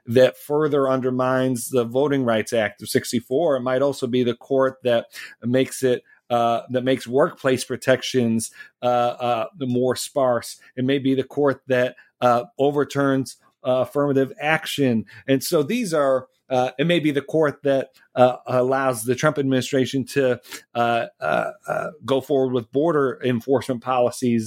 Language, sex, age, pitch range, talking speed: English, male, 40-59, 120-140 Hz, 160 wpm